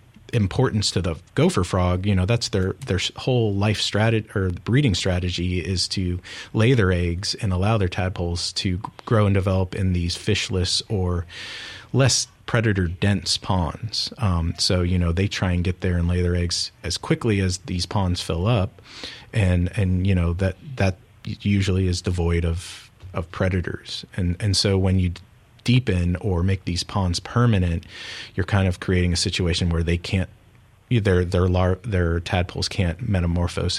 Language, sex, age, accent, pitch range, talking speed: English, male, 30-49, American, 90-110 Hz, 170 wpm